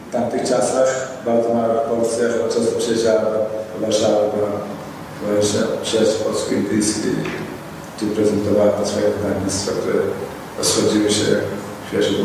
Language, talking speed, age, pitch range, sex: Polish, 105 wpm, 60-79, 105-150 Hz, male